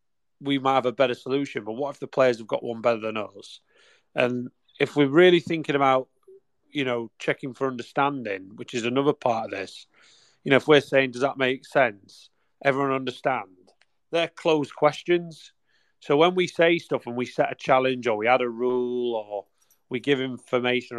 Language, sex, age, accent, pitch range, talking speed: English, male, 30-49, British, 125-155 Hz, 190 wpm